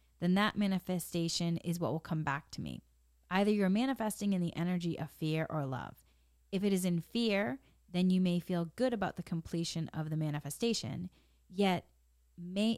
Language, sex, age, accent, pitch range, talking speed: English, female, 30-49, American, 155-200 Hz, 180 wpm